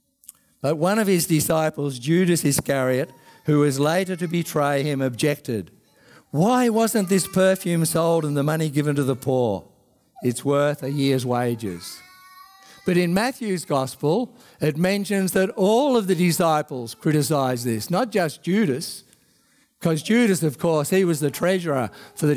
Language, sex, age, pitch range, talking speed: English, male, 50-69, 145-215 Hz, 155 wpm